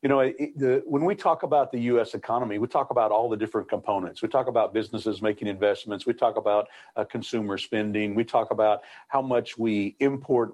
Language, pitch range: English, 105-120 Hz